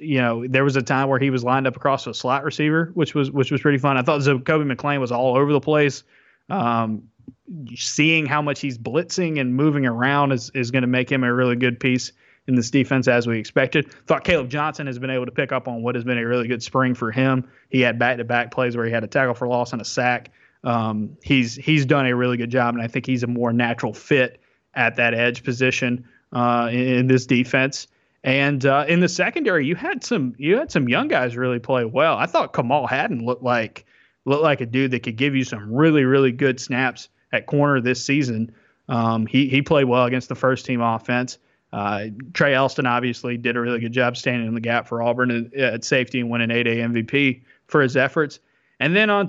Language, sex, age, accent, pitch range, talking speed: English, male, 20-39, American, 120-145 Hz, 235 wpm